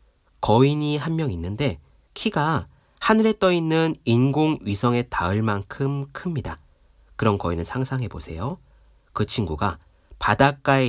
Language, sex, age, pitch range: Korean, male, 40-59, 90-140 Hz